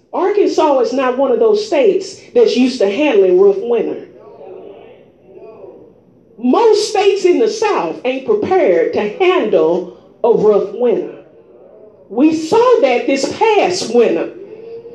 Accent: American